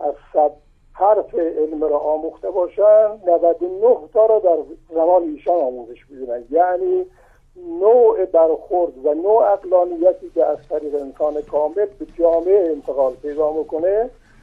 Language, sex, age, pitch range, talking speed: Persian, male, 50-69, 155-205 Hz, 125 wpm